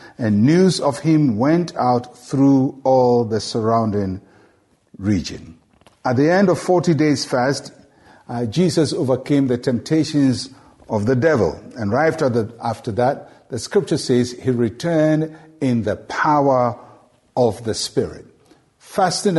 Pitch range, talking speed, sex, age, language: 120-145 Hz, 135 wpm, male, 50-69, English